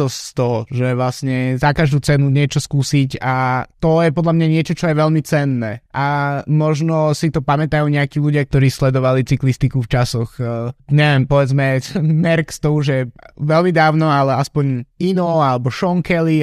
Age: 20-39